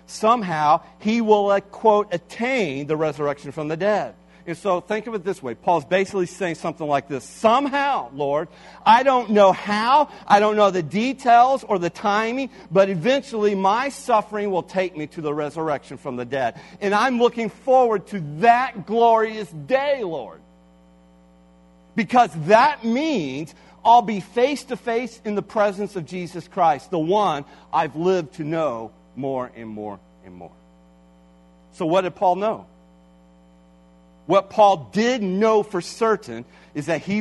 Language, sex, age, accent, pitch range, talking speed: English, male, 40-59, American, 155-225 Hz, 155 wpm